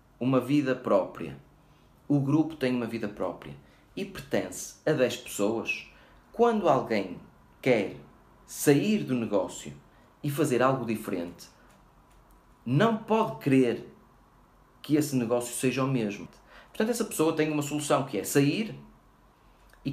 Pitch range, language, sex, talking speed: 120-150 Hz, Portuguese, male, 130 wpm